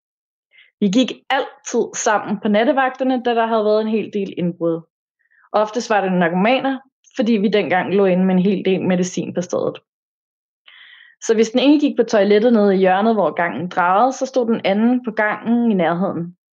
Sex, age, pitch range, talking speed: female, 20-39, 195-240 Hz, 185 wpm